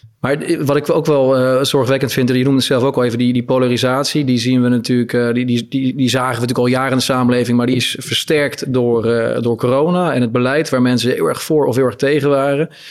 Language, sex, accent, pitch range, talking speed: Dutch, male, Dutch, 125-140 Hz, 245 wpm